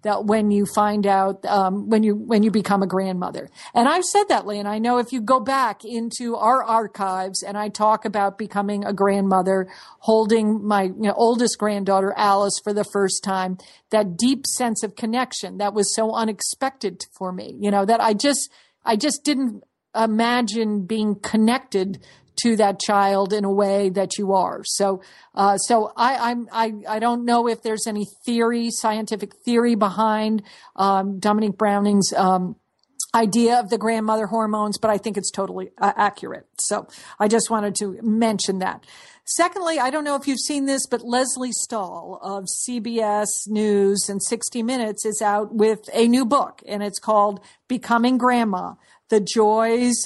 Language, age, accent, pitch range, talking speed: English, 50-69, American, 200-235 Hz, 175 wpm